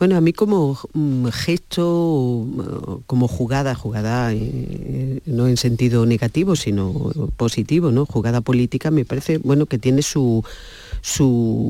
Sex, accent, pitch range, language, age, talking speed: female, Spanish, 115-135 Hz, Spanish, 40-59, 135 wpm